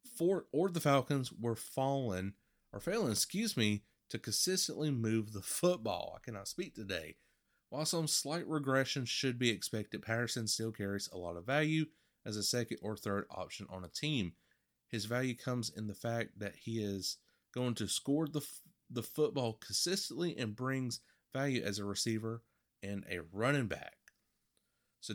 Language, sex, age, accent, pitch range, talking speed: English, male, 30-49, American, 105-145 Hz, 165 wpm